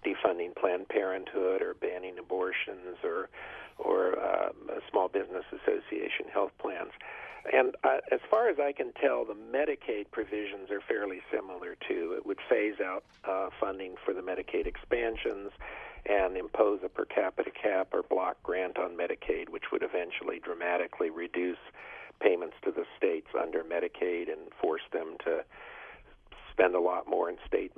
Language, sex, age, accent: English, male, 50-69, American